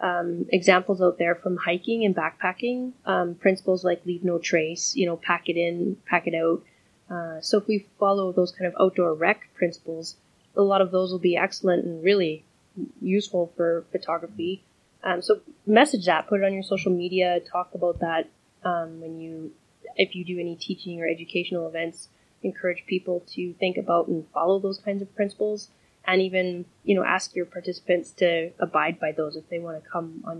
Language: English